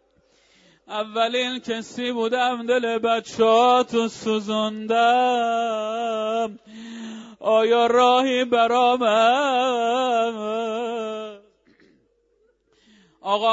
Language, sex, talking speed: Persian, male, 45 wpm